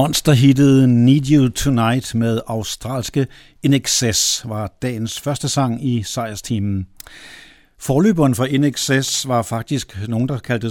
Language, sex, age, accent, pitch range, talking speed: Danish, male, 60-79, native, 115-150 Hz, 120 wpm